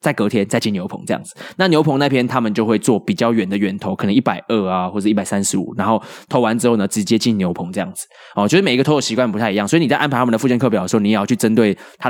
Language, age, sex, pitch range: Chinese, 20-39, male, 105-130 Hz